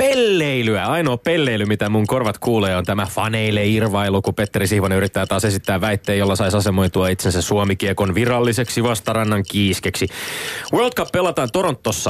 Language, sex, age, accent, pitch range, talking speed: Finnish, male, 30-49, native, 105-145 Hz, 145 wpm